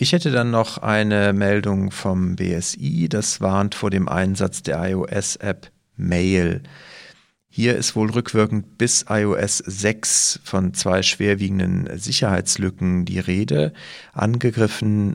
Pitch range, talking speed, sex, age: 95-115 Hz, 120 wpm, male, 40-59